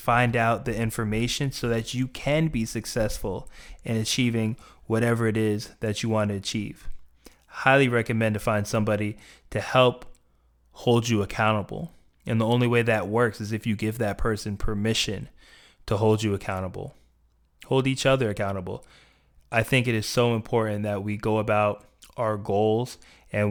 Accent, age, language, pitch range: American, 20-39, English, 100-115 Hz